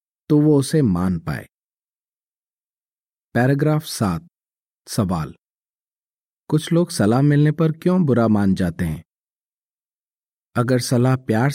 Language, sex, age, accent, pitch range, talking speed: Hindi, male, 40-59, native, 105-145 Hz, 110 wpm